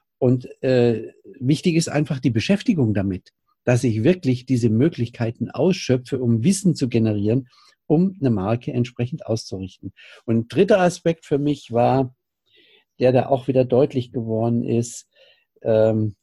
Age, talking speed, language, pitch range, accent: 50-69, 140 wpm, German, 115-145 Hz, German